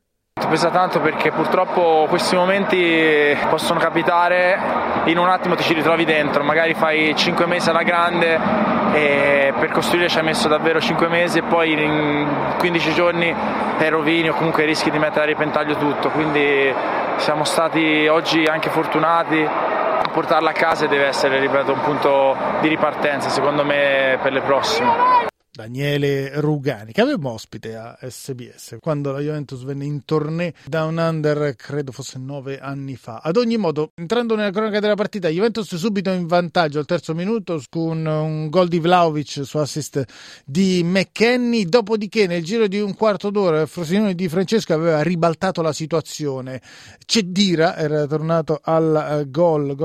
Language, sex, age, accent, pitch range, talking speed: Italian, male, 20-39, native, 145-175 Hz, 160 wpm